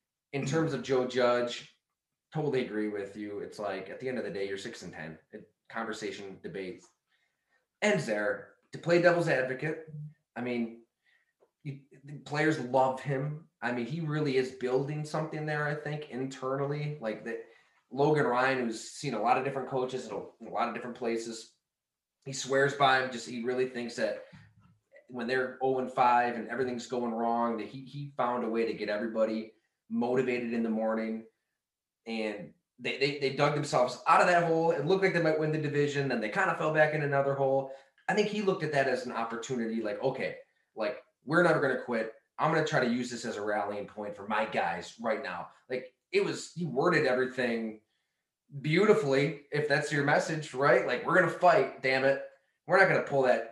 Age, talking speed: 20-39, 205 wpm